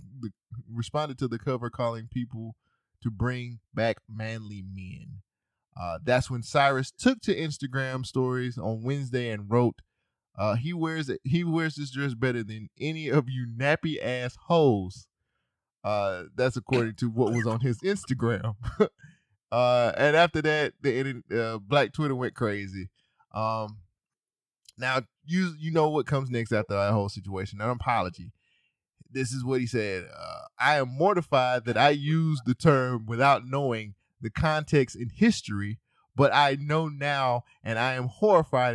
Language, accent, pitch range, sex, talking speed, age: English, American, 110-140 Hz, male, 155 wpm, 20-39